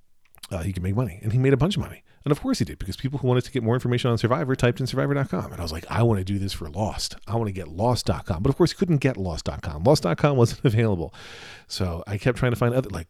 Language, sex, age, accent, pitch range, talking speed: English, male, 40-59, American, 95-125 Hz, 295 wpm